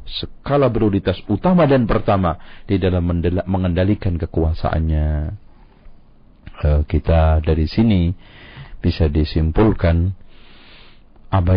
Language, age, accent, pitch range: Indonesian, 50-69, native, 85-125 Hz